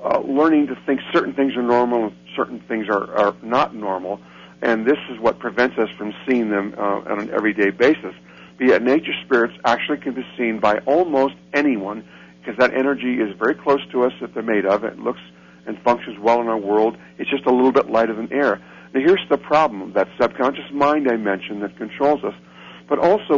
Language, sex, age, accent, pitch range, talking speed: English, male, 50-69, American, 105-145 Hz, 210 wpm